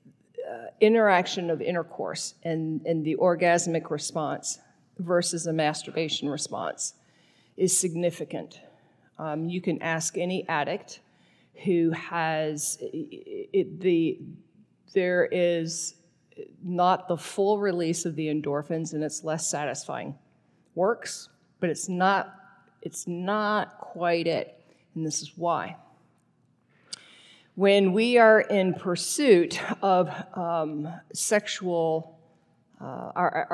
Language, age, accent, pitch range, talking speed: English, 50-69, American, 155-185 Hz, 100 wpm